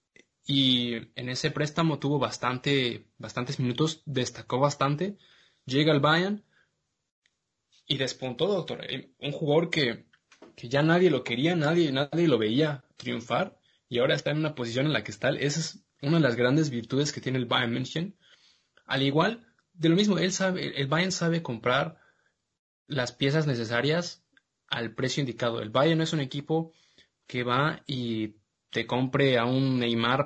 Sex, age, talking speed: male, 20-39, 160 wpm